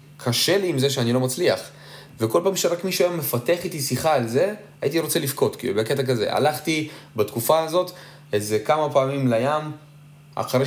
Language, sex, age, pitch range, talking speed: Hebrew, male, 20-39, 115-150 Hz, 175 wpm